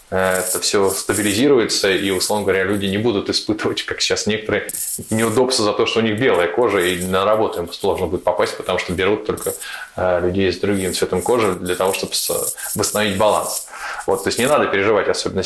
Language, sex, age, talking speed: Russian, male, 20-39, 190 wpm